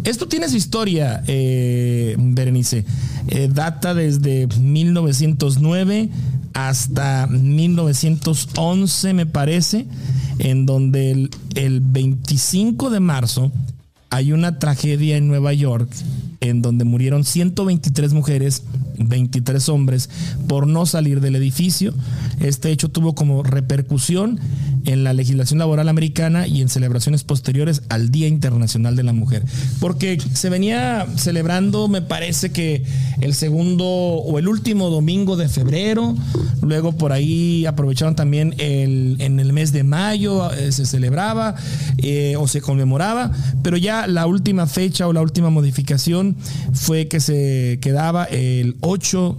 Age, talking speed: 40-59, 130 wpm